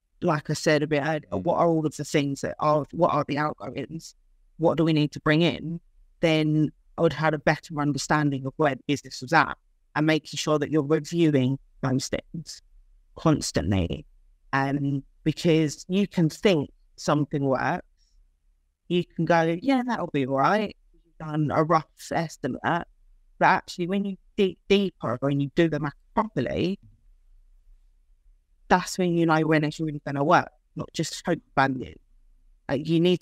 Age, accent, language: 30-49, British, English